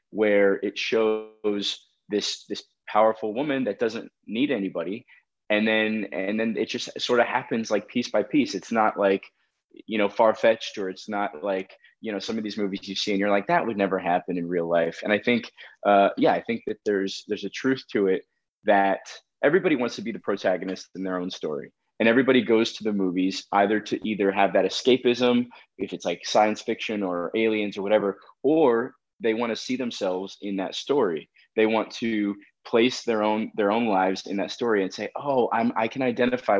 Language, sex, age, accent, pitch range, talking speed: English, male, 20-39, American, 100-115 Hz, 205 wpm